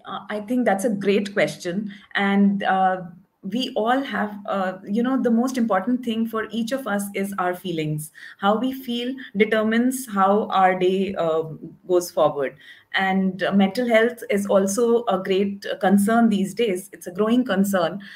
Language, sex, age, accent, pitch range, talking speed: English, female, 30-49, Indian, 195-245 Hz, 165 wpm